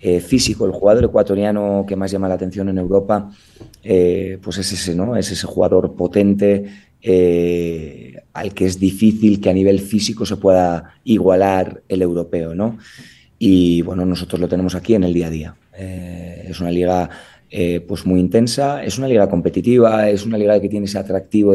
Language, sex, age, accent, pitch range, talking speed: Spanish, male, 30-49, Spanish, 90-105 Hz, 185 wpm